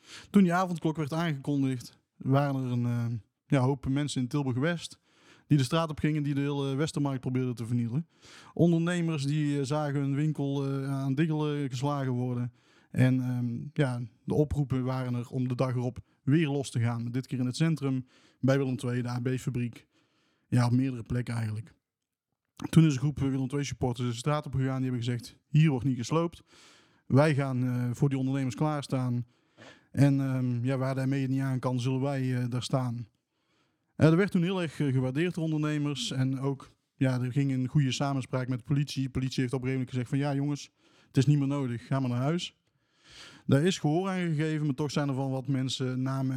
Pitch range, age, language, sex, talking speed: 125-150 Hz, 20-39, Dutch, male, 200 wpm